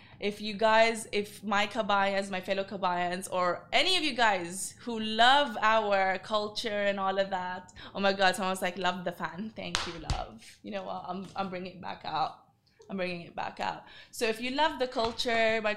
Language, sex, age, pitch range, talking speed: Arabic, female, 20-39, 175-210 Hz, 205 wpm